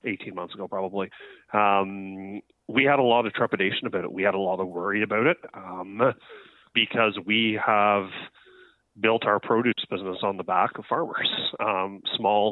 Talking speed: 175 wpm